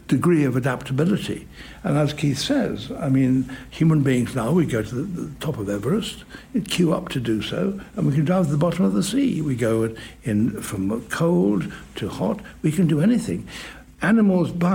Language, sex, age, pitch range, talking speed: English, male, 60-79, 125-175 Hz, 195 wpm